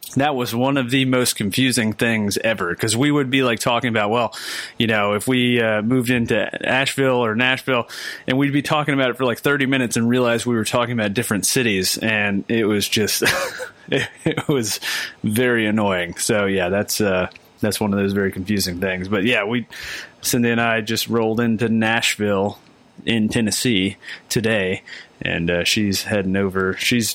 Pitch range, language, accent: 100-120 Hz, English, American